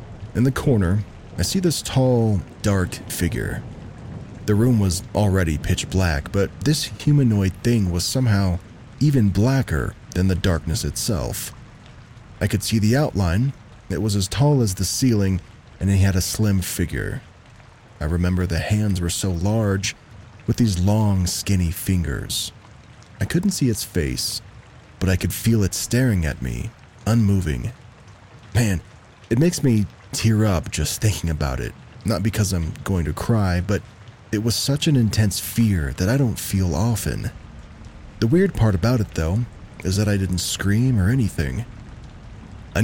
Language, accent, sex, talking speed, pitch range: English, American, male, 160 wpm, 95-115 Hz